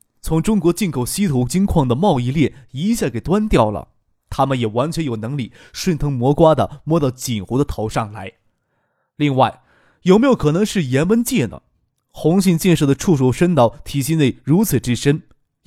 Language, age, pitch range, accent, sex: Chinese, 20-39, 120-175 Hz, native, male